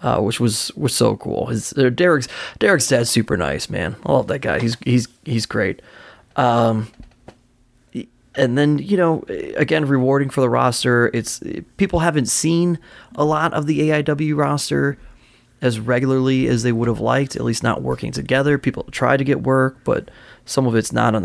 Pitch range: 120-145 Hz